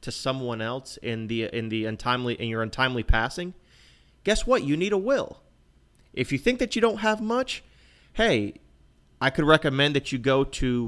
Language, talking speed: English, 190 wpm